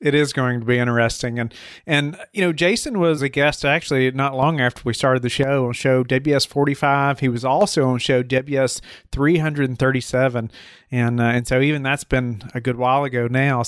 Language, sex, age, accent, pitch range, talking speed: English, male, 30-49, American, 130-155 Hz, 190 wpm